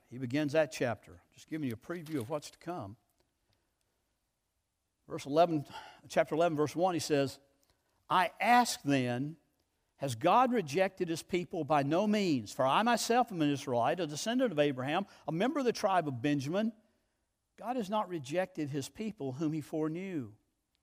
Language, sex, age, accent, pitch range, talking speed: English, male, 60-79, American, 115-175 Hz, 165 wpm